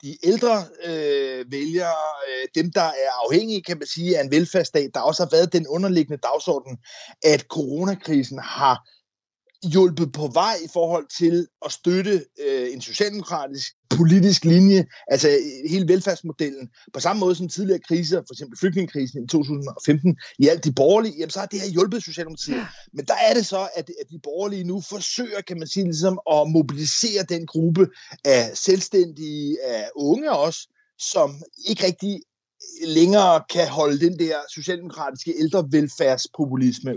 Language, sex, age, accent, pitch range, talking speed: Danish, male, 30-49, native, 150-200 Hz, 155 wpm